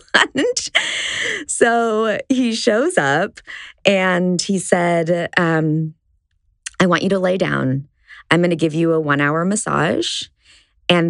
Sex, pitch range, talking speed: female, 150-210 Hz, 130 wpm